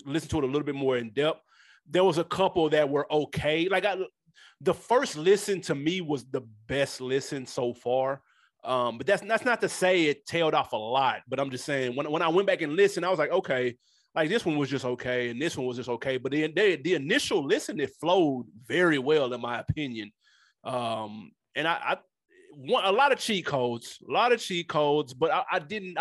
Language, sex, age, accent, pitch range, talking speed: English, male, 30-49, American, 130-185 Hz, 230 wpm